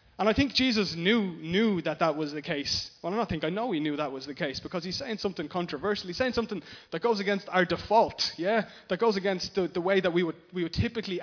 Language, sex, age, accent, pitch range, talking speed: English, male, 20-39, Irish, 150-195 Hz, 260 wpm